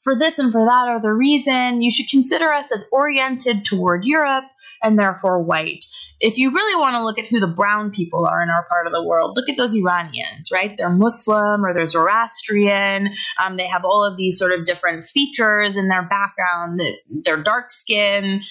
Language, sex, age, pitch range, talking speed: English, female, 20-39, 185-250 Hz, 200 wpm